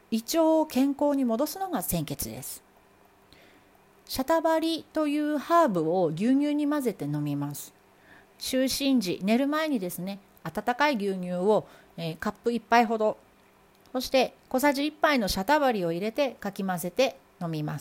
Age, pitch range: 40-59, 185-275 Hz